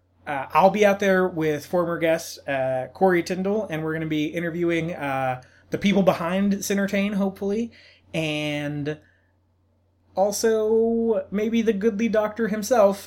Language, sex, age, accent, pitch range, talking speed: English, male, 30-49, American, 150-195 Hz, 140 wpm